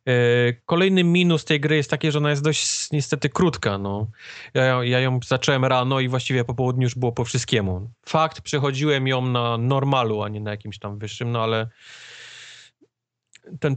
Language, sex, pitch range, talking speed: Polish, male, 110-135 Hz, 170 wpm